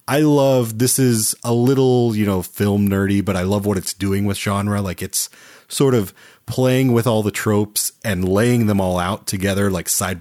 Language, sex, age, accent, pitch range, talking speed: English, male, 30-49, American, 95-120 Hz, 205 wpm